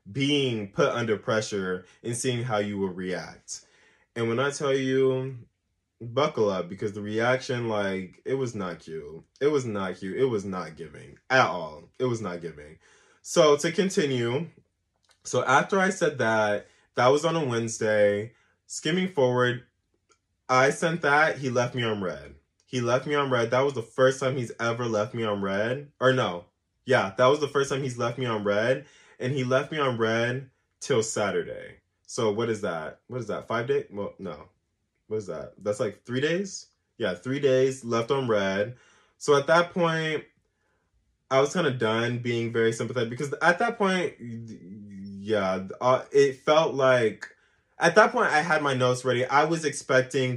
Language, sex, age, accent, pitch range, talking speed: English, male, 20-39, American, 105-140 Hz, 185 wpm